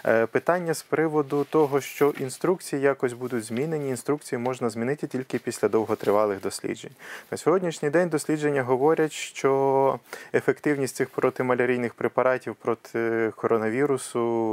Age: 20-39